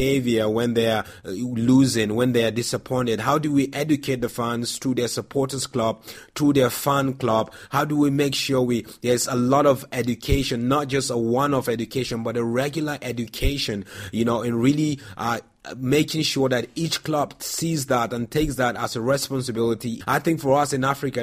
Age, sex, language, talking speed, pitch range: 30-49, male, English, 185 wpm, 115-140 Hz